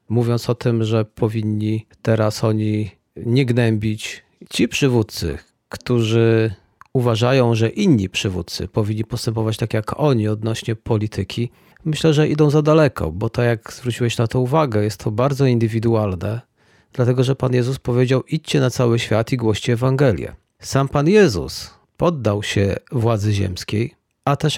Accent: native